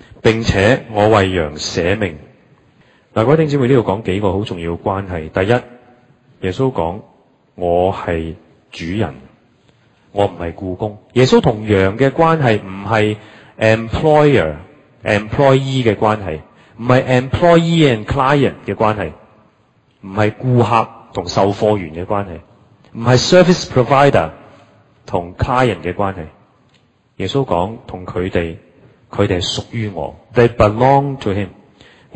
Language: Chinese